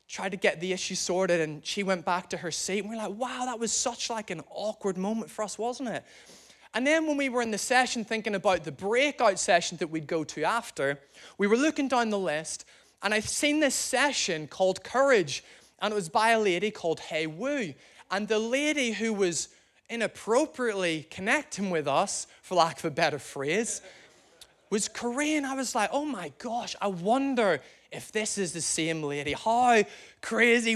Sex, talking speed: male, 195 wpm